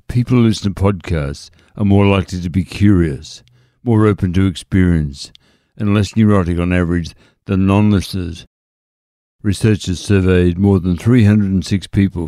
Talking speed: 135 wpm